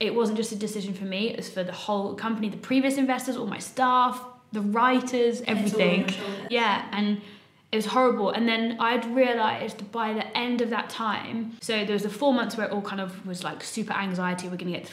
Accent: British